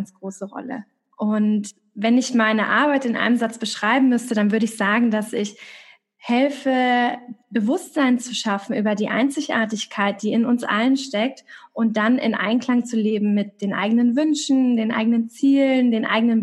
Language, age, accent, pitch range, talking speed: German, 20-39, German, 215-245 Hz, 165 wpm